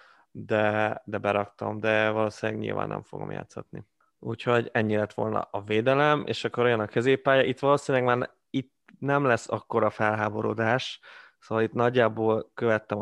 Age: 20-39